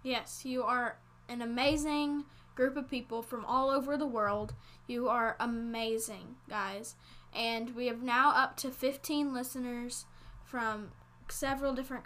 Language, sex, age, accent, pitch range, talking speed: English, female, 10-29, American, 225-265 Hz, 140 wpm